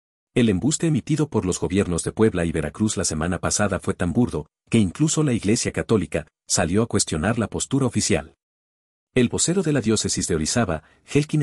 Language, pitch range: Spanish, 80-115 Hz